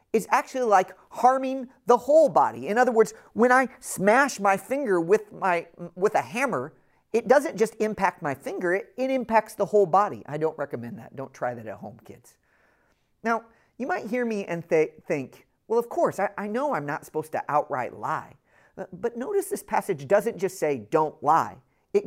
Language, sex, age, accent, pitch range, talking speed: English, male, 40-59, American, 160-240 Hz, 200 wpm